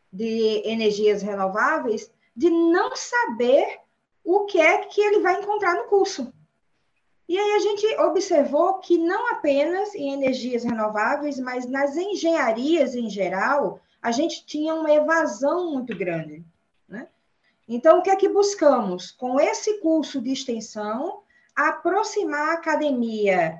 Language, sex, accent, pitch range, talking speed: Portuguese, female, Brazilian, 235-340 Hz, 135 wpm